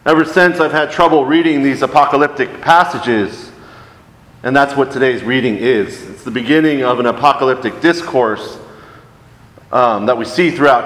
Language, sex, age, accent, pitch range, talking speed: English, male, 40-59, American, 120-140 Hz, 150 wpm